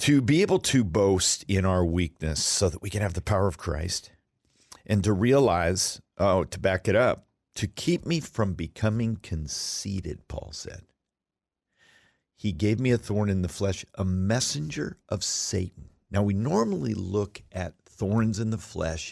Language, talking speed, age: English, 170 wpm, 50-69